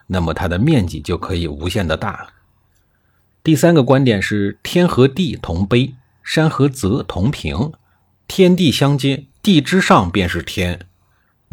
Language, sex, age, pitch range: Chinese, male, 50-69, 95-140 Hz